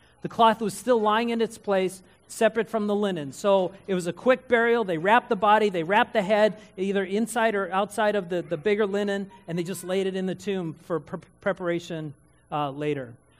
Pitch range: 160-230 Hz